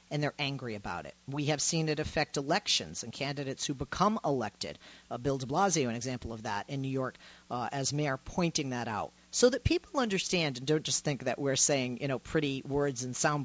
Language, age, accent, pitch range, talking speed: English, 40-59, American, 130-190 Hz, 220 wpm